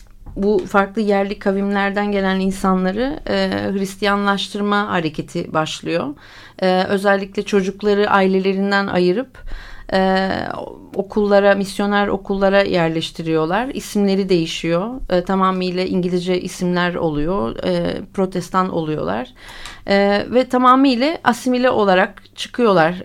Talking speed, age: 95 wpm, 40-59